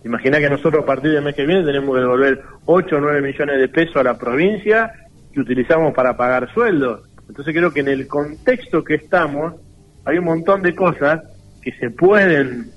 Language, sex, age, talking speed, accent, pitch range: Spanish, male, 40-59, 195 wpm, Argentinian, 130-170 Hz